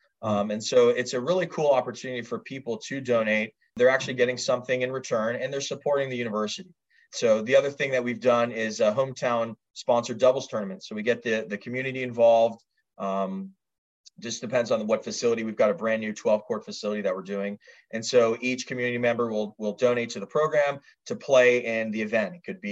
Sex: male